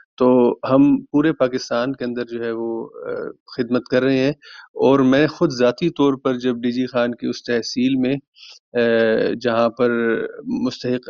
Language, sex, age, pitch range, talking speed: Urdu, male, 30-49, 120-130 Hz, 160 wpm